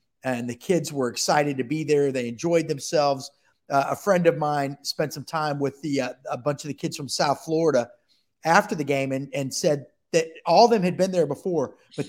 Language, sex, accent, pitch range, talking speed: English, male, American, 140-180 Hz, 225 wpm